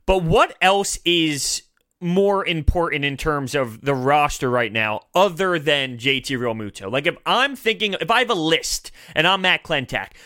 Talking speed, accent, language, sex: 175 wpm, American, English, male